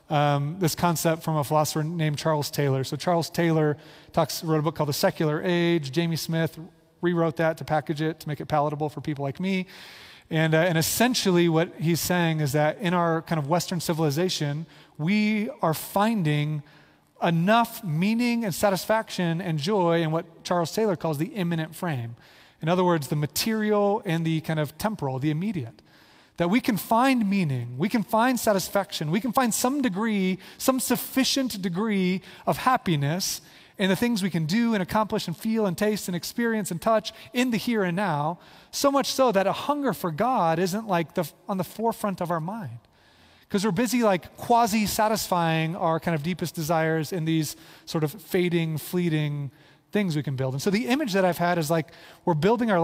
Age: 30-49